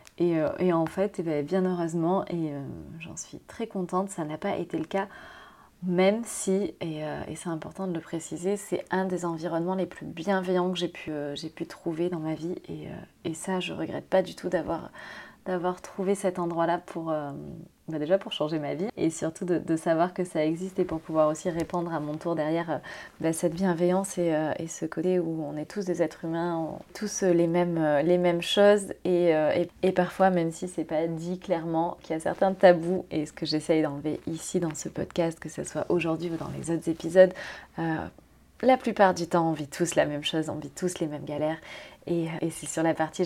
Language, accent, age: French, French, 20-39